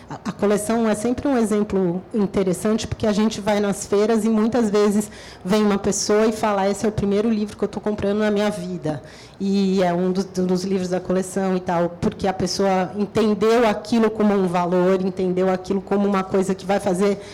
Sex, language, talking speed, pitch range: female, Portuguese, 205 wpm, 195-230 Hz